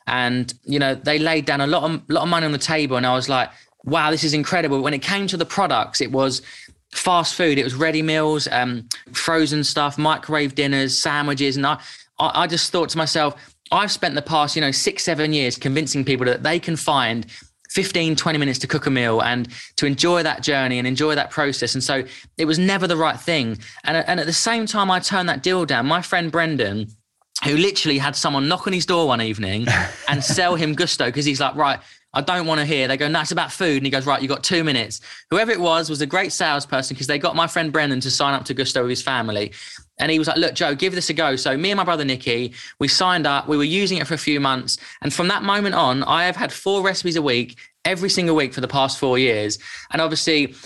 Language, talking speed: English, 250 wpm